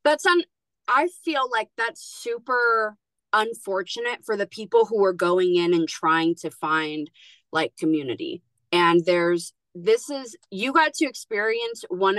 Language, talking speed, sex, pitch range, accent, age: English, 150 wpm, female, 175-230 Hz, American, 20-39